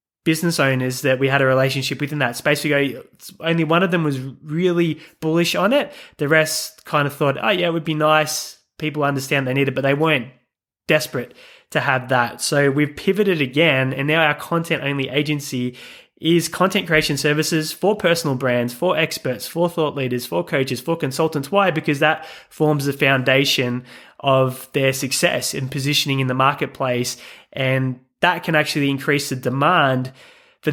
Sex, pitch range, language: male, 130-155 Hz, English